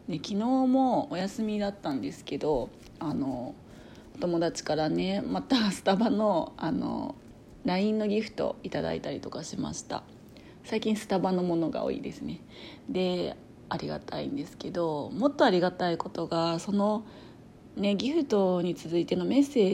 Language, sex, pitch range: Japanese, female, 165-220 Hz